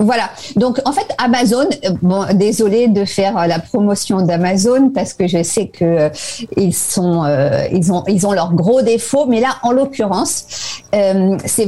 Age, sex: 50-69, female